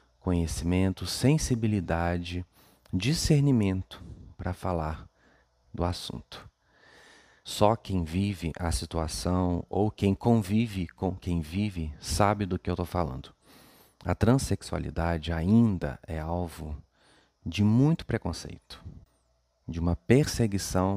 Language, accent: Portuguese, Brazilian